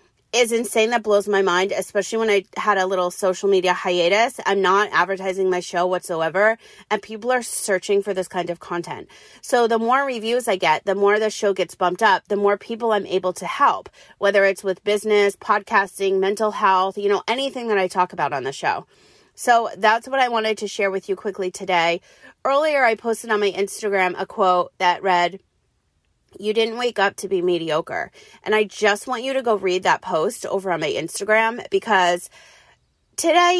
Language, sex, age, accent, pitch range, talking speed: English, female, 30-49, American, 185-225 Hz, 200 wpm